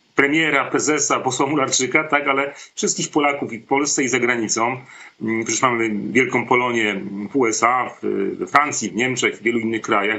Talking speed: 170 wpm